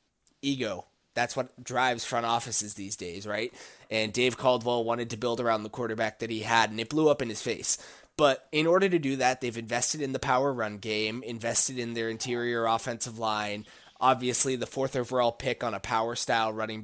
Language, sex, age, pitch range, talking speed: English, male, 20-39, 115-140 Hz, 205 wpm